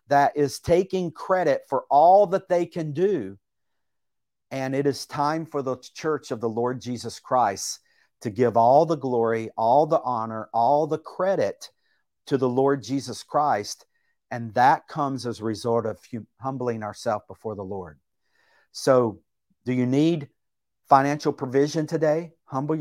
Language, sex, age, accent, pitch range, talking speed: English, male, 50-69, American, 120-150 Hz, 155 wpm